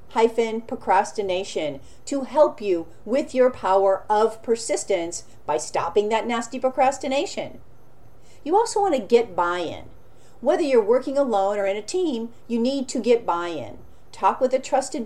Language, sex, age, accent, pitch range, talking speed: English, female, 40-59, American, 220-300 Hz, 145 wpm